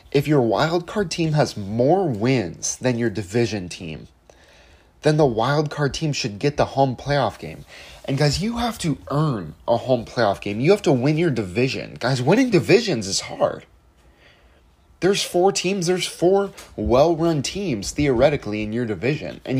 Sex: male